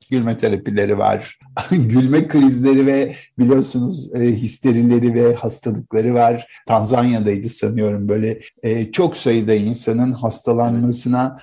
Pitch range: 115-145 Hz